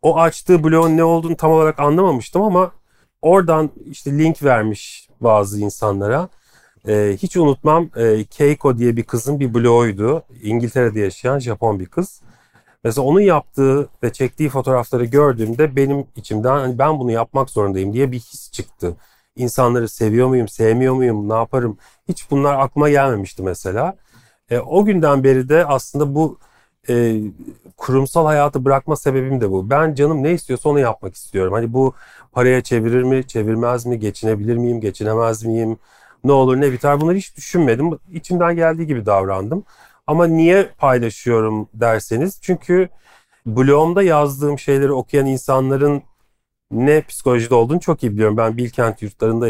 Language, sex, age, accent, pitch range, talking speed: Turkish, male, 40-59, native, 115-150 Hz, 145 wpm